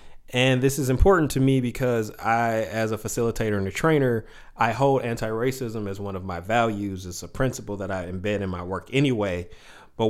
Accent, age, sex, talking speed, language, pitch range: American, 30-49, male, 195 wpm, English, 95-120 Hz